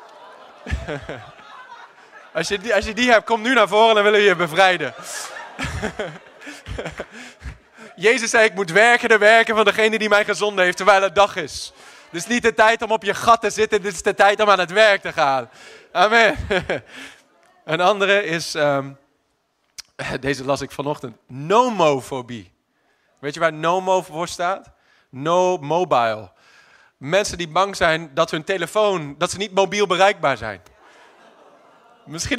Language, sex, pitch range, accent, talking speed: English, male, 165-220 Hz, Dutch, 155 wpm